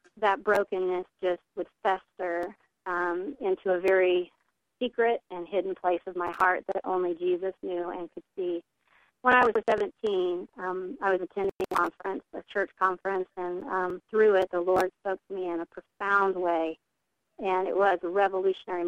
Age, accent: 40-59, American